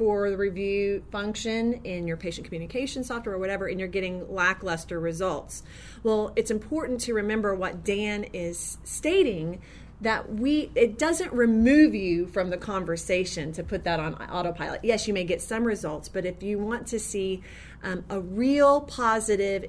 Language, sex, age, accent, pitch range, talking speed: English, female, 30-49, American, 175-225 Hz, 170 wpm